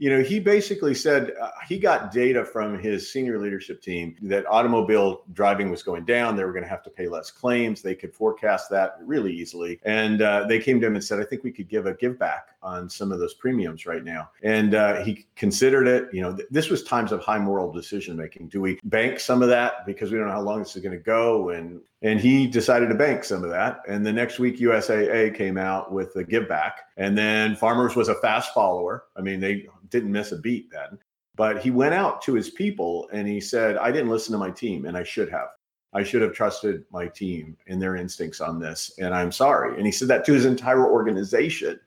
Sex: male